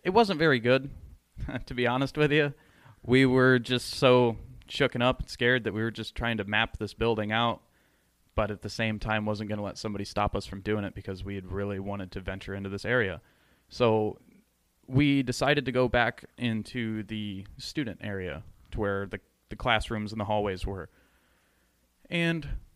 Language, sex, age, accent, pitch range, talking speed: English, male, 20-39, American, 100-130 Hz, 190 wpm